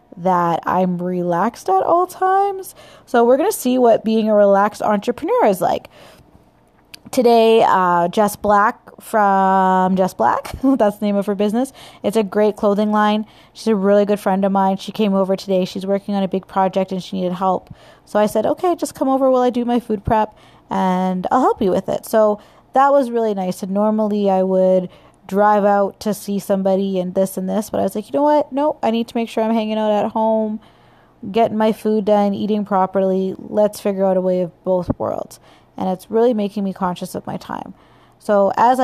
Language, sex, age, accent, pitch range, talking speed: English, female, 20-39, American, 190-220 Hz, 210 wpm